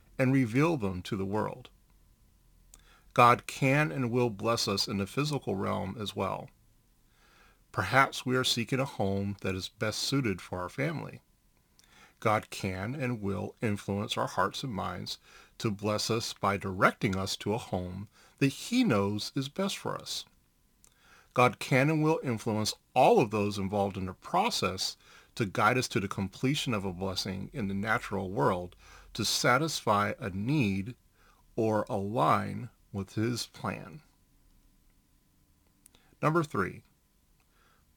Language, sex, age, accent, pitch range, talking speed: English, male, 40-59, American, 95-125 Hz, 145 wpm